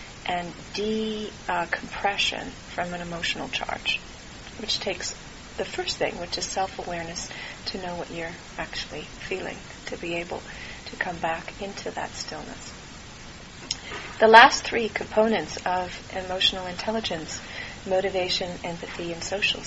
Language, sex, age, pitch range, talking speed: English, female, 40-59, 180-220 Hz, 125 wpm